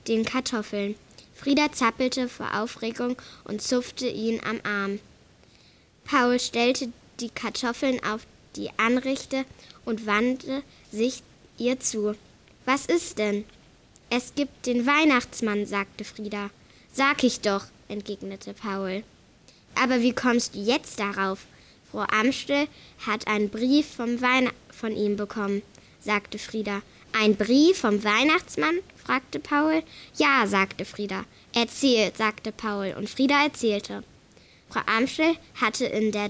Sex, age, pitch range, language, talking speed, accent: female, 10-29, 210-260 Hz, German, 120 wpm, German